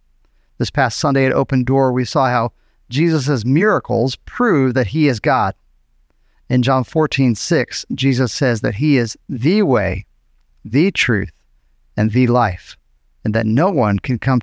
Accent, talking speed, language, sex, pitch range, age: American, 160 wpm, English, male, 95-155 Hz, 40-59